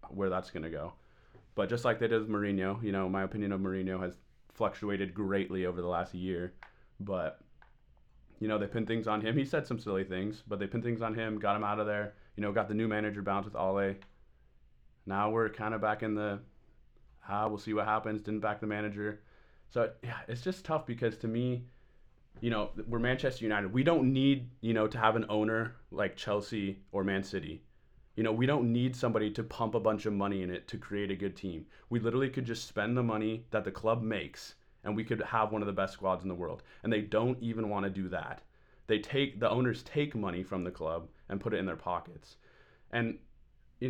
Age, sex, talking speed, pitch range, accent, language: 20-39, male, 230 wpm, 95-115 Hz, American, English